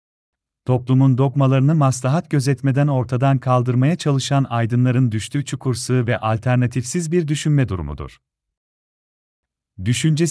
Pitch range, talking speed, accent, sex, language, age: 115-150 Hz, 95 wpm, native, male, Turkish, 40-59